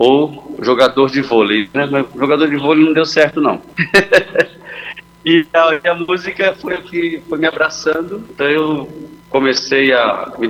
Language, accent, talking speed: Portuguese, Brazilian, 145 wpm